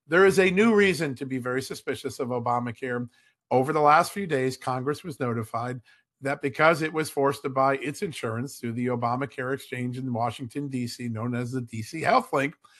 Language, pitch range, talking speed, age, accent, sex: English, 125-155 Hz, 190 wpm, 50-69, American, male